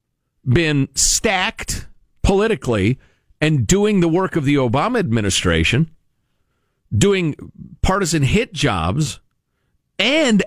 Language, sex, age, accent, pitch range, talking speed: English, male, 50-69, American, 130-215 Hz, 90 wpm